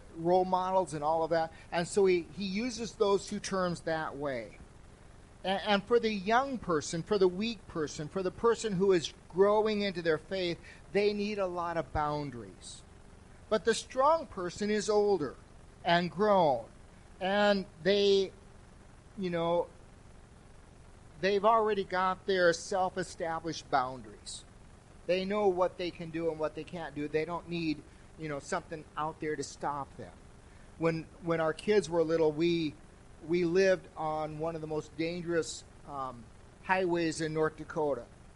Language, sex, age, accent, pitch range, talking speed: English, male, 40-59, American, 145-185 Hz, 160 wpm